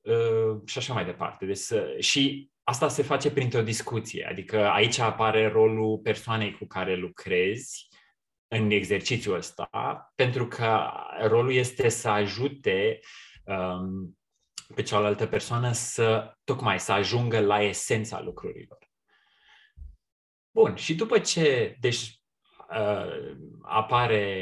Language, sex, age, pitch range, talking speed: Romanian, male, 20-39, 105-140 Hz, 115 wpm